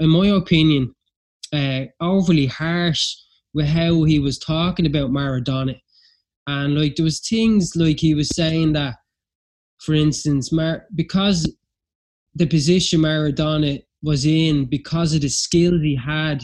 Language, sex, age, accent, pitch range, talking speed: English, male, 20-39, Irish, 140-165 Hz, 135 wpm